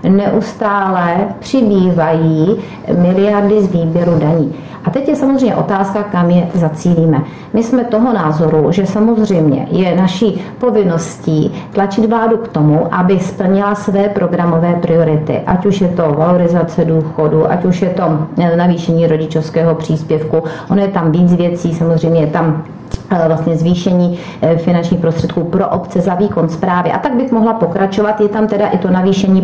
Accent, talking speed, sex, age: native, 150 wpm, female, 40-59